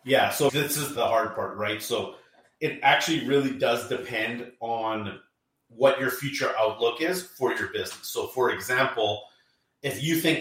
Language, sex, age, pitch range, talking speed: English, male, 30-49, 120-145 Hz, 165 wpm